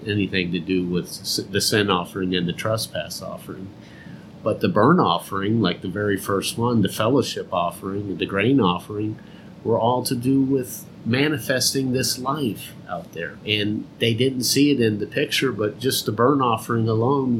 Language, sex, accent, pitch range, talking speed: English, male, American, 100-130 Hz, 170 wpm